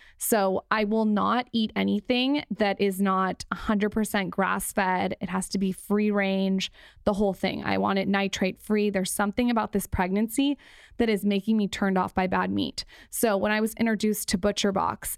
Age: 20-39